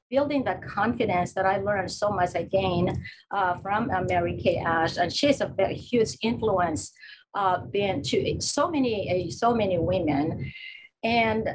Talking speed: 165 wpm